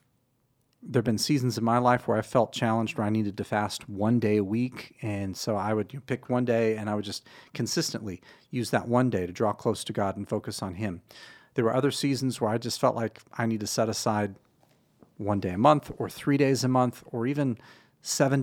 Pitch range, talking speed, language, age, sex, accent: 110-140 Hz, 240 wpm, English, 40-59, male, American